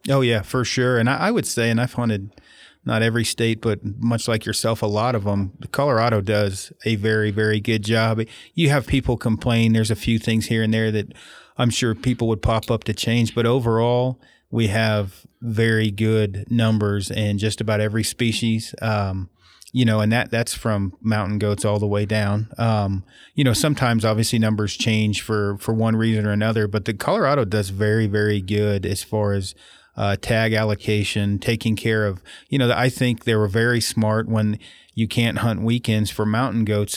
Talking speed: 195 wpm